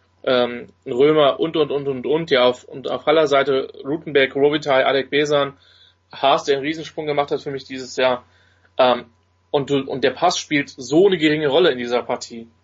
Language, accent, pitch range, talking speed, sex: German, German, 115-140 Hz, 195 wpm, male